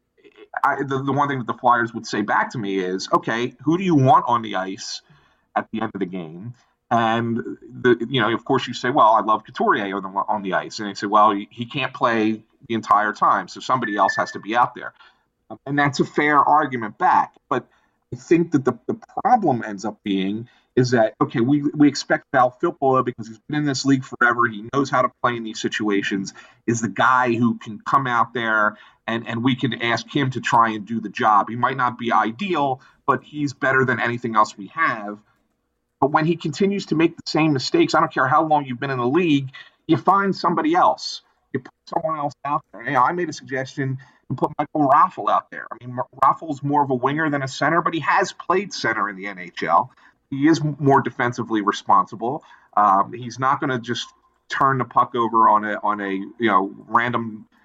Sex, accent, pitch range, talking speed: male, American, 115-145 Hz, 225 wpm